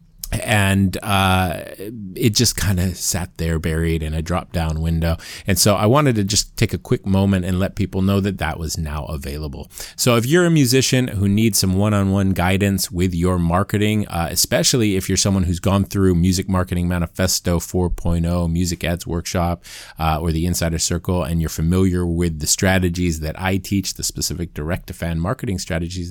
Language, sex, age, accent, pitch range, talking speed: English, male, 30-49, American, 85-110 Hz, 185 wpm